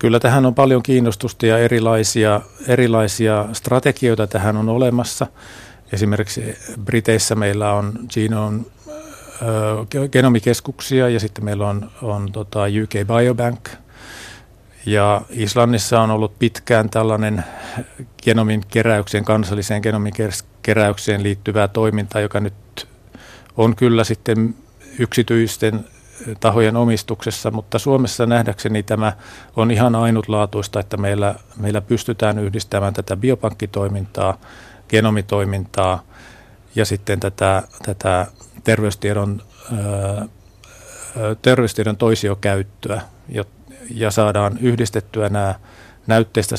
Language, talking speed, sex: Finnish, 95 wpm, male